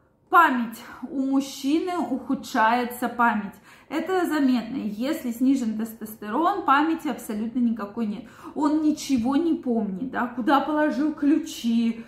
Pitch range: 225-290 Hz